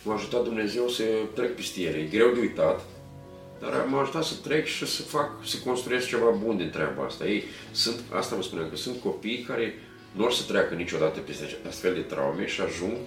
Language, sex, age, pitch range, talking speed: Romanian, male, 40-59, 100-145 Hz, 205 wpm